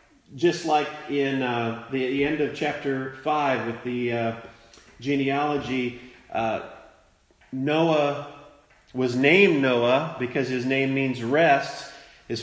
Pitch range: 125-155 Hz